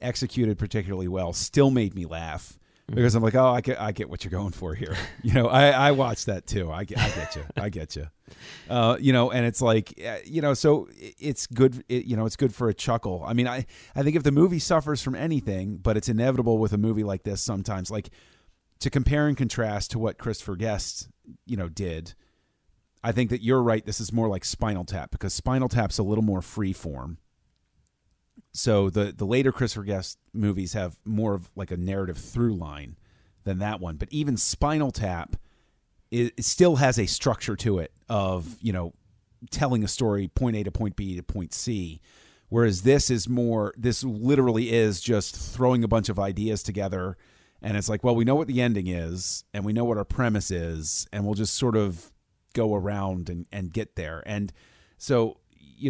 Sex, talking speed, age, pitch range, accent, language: male, 210 wpm, 40-59, 95-120 Hz, American, English